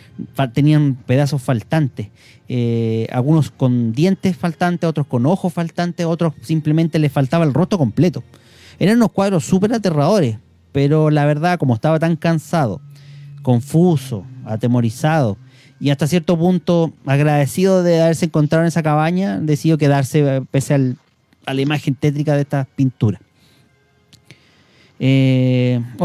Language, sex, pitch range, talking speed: Spanish, male, 130-170 Hz, 130 wpm